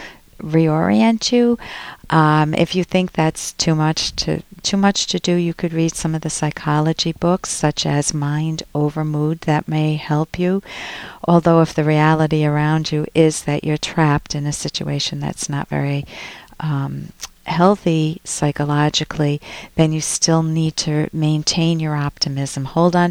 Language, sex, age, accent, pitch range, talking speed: English, female, 50-69, American, 145-170 Hz, 160 wpm